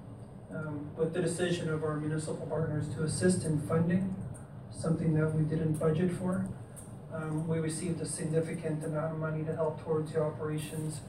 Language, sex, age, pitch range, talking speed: English, male, 30-49, 150-160 Hz, 170 wpm